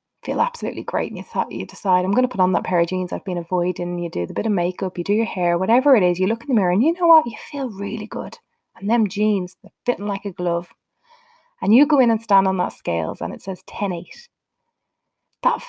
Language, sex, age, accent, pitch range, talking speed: English, female, 20-39, Irish, 195-250 Hz, 265 wpm